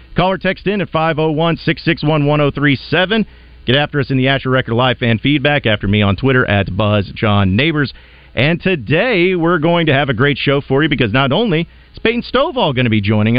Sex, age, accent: male, 40-59, American